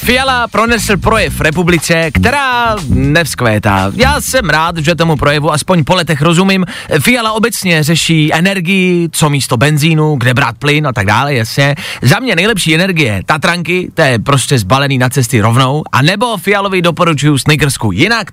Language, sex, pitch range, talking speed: Czech, male, 130-190 Hz, 170 wpm